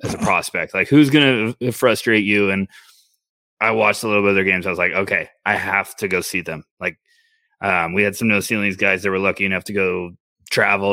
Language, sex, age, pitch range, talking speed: English, male, 20-39, 100-125 Hz, 235 wpm